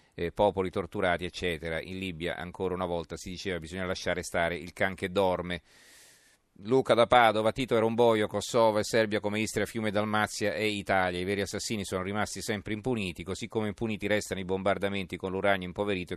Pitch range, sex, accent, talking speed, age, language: 90-105 Hz, male, native, 180 wpm, 40-59, Italian